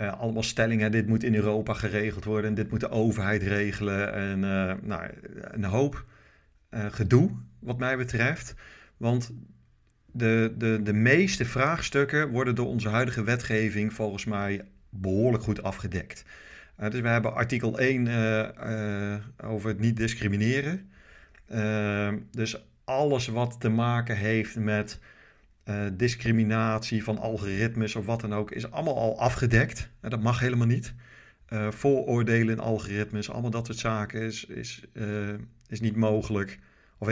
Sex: male